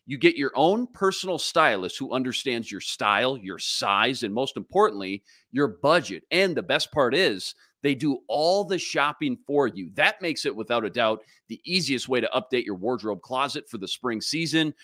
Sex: male